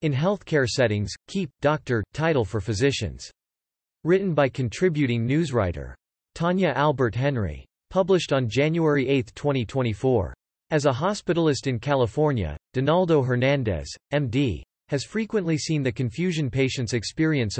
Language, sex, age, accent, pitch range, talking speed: English, male, 40-59, American, 115-150 Hz, 115 wpm